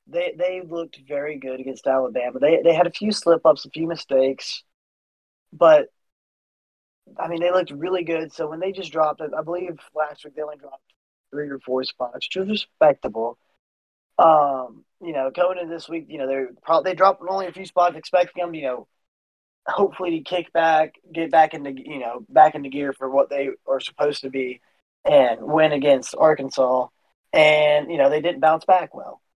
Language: English